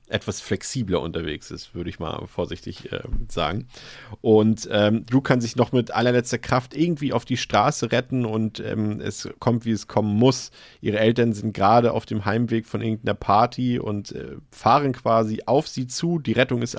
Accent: German